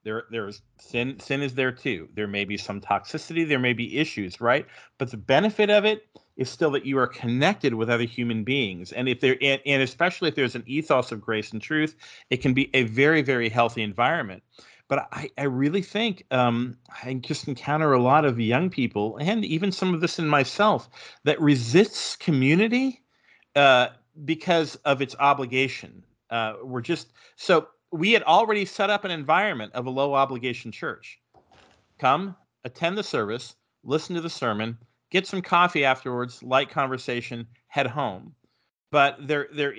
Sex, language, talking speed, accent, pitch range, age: male, English, 180 wpm, American, 120-150 Hz, 40-59